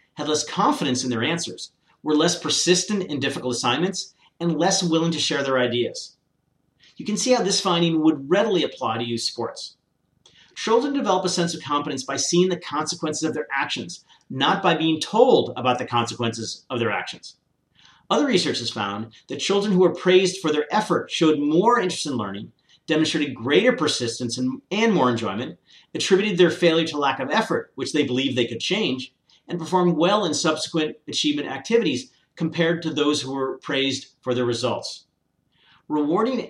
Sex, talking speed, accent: male, 175 wpm, American